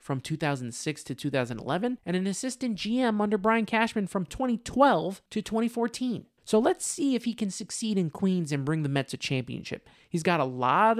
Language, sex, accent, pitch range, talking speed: English, male, American, 160-225 Hz, 185 wpm